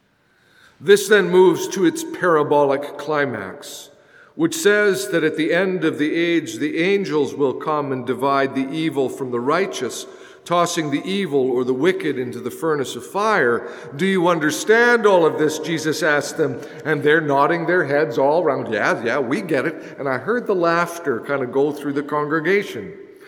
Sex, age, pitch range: male, 50-69, 155-205 Hz